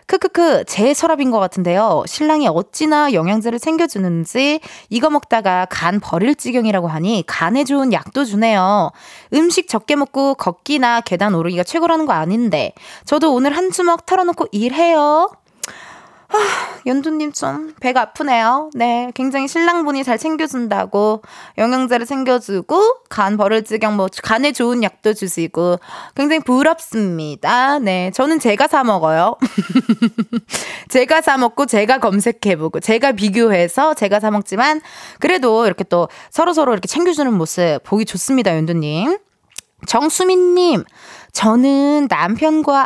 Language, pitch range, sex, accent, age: Korean, 205-310 Hz, female, native, 20-39